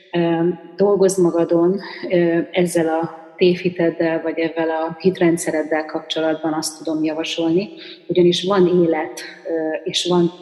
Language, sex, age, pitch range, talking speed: Hungarian, female, 30-49, 160-185 Hz, 105 wpm